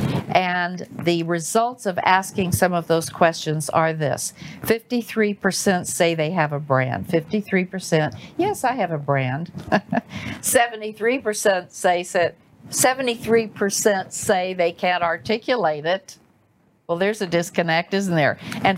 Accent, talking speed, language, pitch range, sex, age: American, 125 wpm, English, 165-205 Hz, female, 50-69